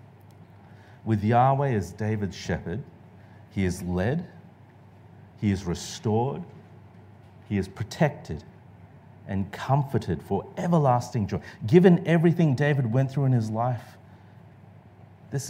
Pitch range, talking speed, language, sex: 100-130 Hz, 110 wpm, English, male